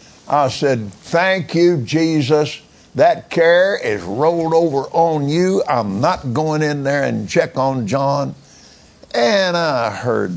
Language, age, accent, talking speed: English, 60-79, American, 140 wpm